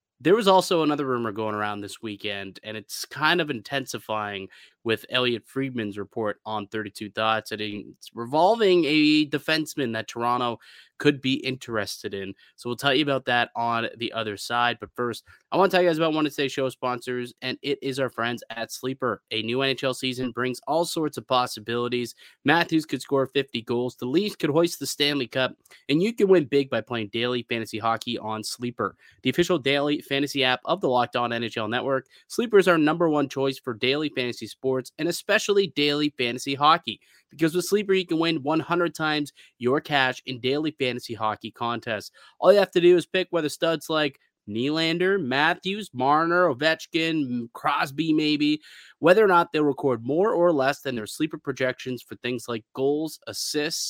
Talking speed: 190 wpm